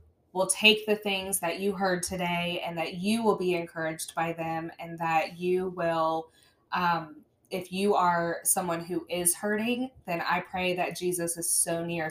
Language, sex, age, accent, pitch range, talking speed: English, female, 20-39, American, 165-185 Hz, 180 wpm